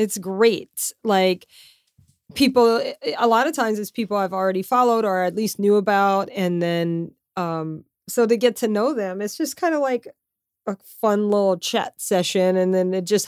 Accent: American